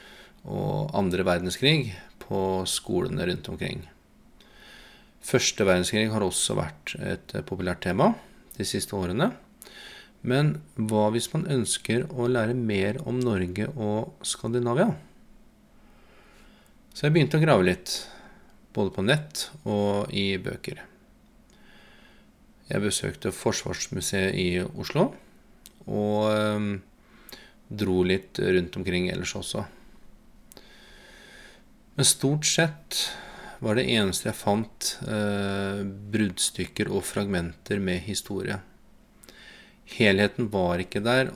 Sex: male